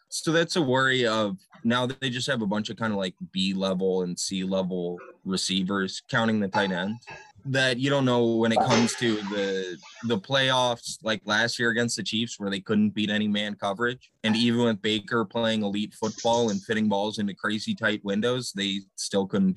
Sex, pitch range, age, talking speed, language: male, 95-120 Hz, 20-39, 205 wpm, English